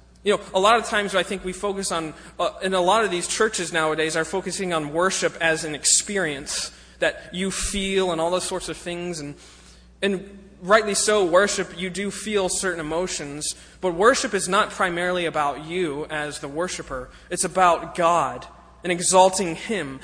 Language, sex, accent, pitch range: English, male, American, 165-200 Hz